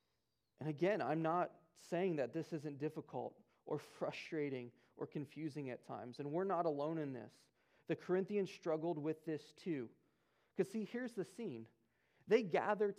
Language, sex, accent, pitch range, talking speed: English, male, American, 160-225 Hz, 155 wpm